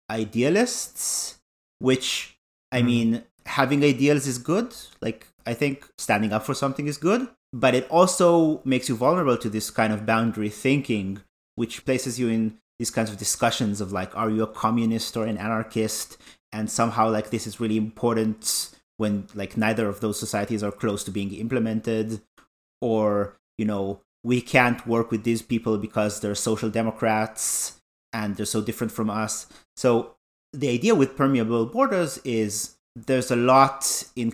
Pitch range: 105-125 Hz